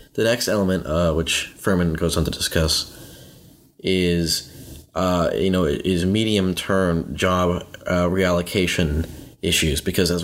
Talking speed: 130 wpm